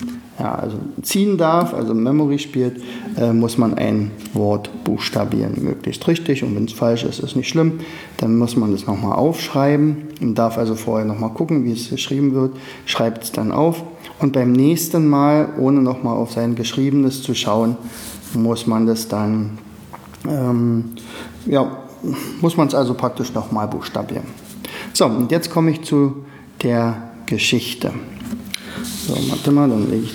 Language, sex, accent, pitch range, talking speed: German, male, German, 115-160 Hz, 160 wpm